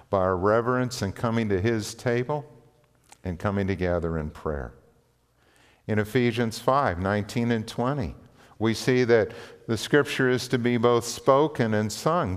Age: 50-69